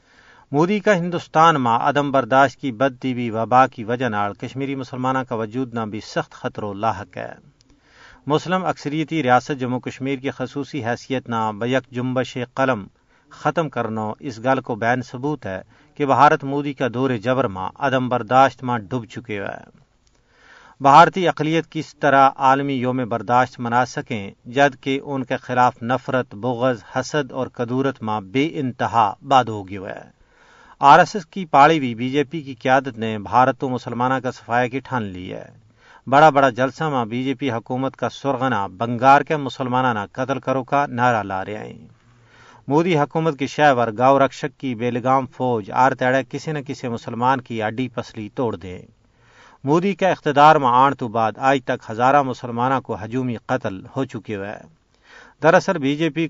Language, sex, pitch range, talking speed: Urdu, male, 120-140 Hz, 170 wpm